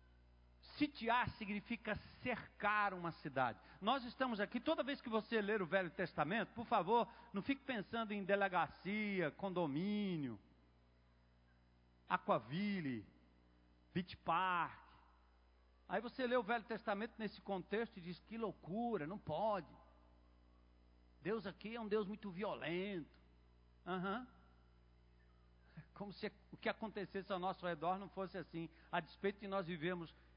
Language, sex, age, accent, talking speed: Portuguese, male, 60-79, Brazilian, 125 wpm